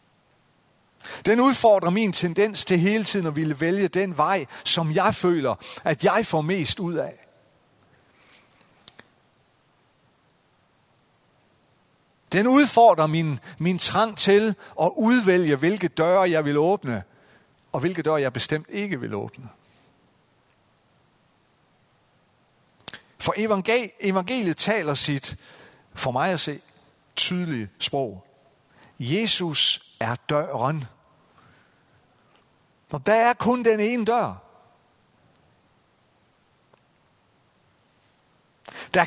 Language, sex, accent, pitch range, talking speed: Danish, male, native, 145-200 Hz, 95 wpm